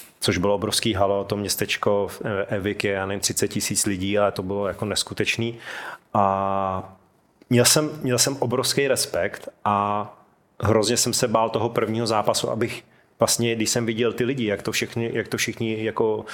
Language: Czech